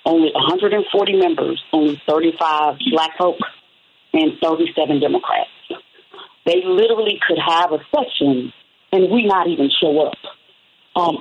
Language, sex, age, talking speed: English, female, 40-59, 125 wpm